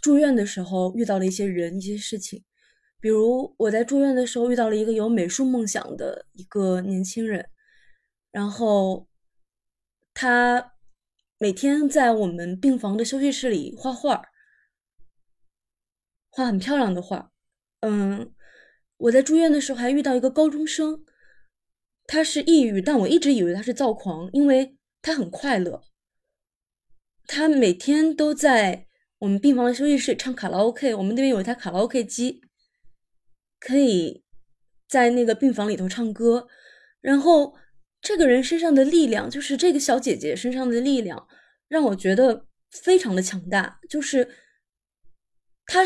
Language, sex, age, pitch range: Chinese, female, 20-39, 205-285 Hz